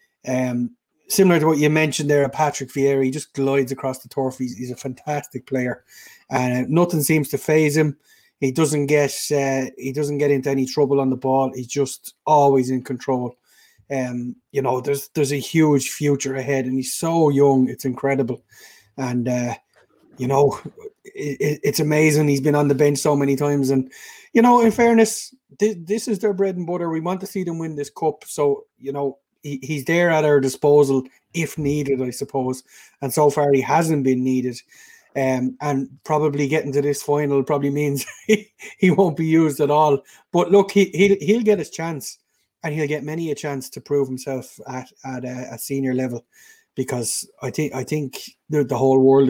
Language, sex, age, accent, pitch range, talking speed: English, male, 30-49, Irish, 130-155 Hz, 200 wpm